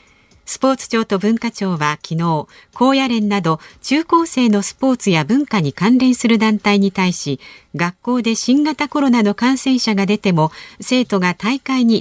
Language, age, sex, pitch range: Japanese, 40-59, female, 175-260 Hz